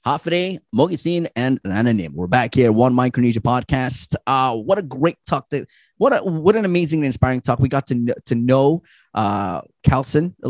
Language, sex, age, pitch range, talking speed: English, male, 20-39, 110-160 Hz, 195 wpm